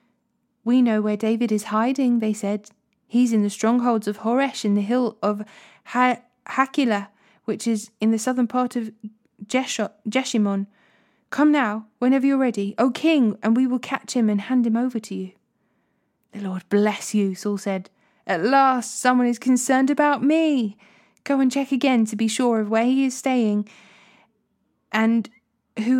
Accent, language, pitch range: British, English, 205-245 Hz